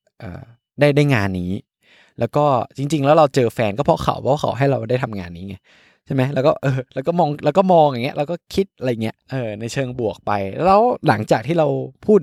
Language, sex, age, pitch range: Thai, male, 20-39, 100-135 Hz